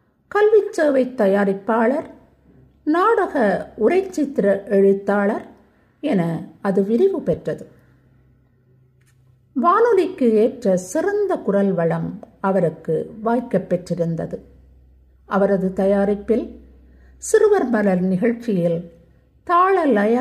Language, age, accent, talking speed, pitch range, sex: Tamil, 50-69, native, 75 wpm, 180-305 Hz, female